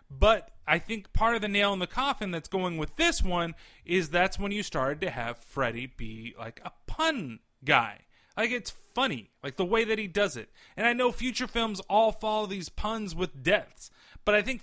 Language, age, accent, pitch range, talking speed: English, 30-49, American, 145-205 Hz, 215 wpm